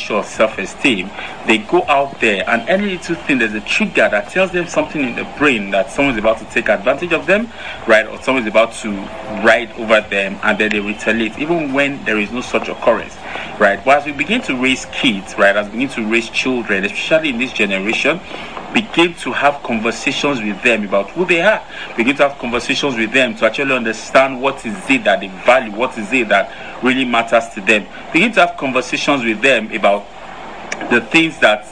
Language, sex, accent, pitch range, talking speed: English, male, Nigerian, 110-150 Hz, 205 wpm